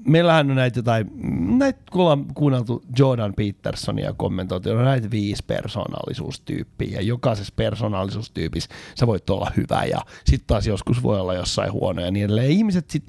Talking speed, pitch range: 150 wpm, 115-175 Hz